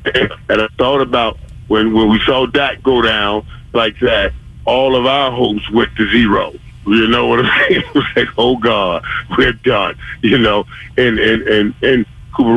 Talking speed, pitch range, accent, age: 185 wpm, 110-165 Hz, American, 40-59